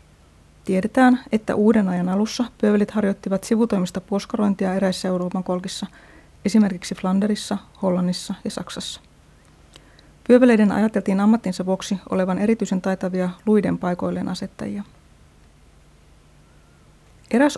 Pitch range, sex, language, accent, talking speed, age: 180-215 Hz, female, Finnish, native, 95 wpm, 30-49